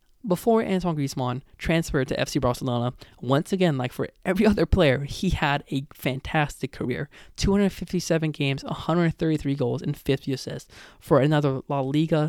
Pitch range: 140-205 Hz